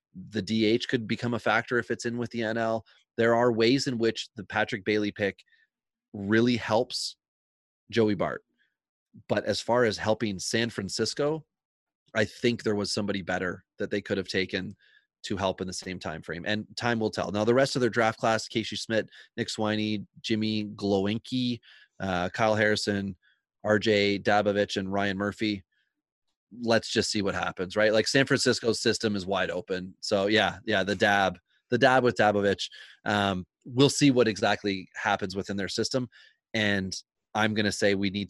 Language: English